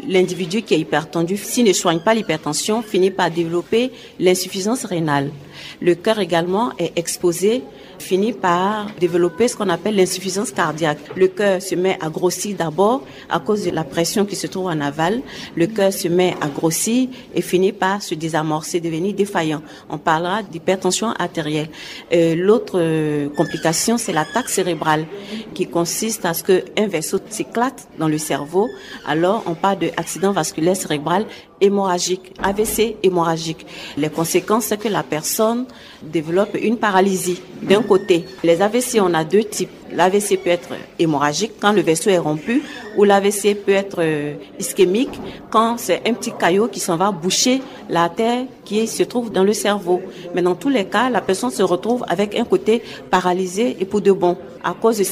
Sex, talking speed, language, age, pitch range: female, 170 wpm, French, 40-59, 170-215 Hz